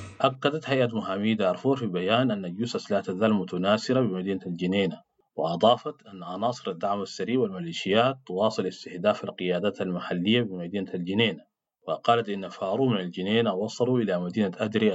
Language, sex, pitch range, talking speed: English, male, 95-125 Hz, 135 wpm